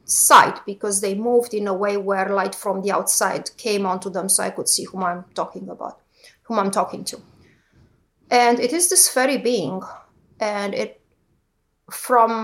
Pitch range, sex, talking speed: 195-245 Hz, female, 175 wpm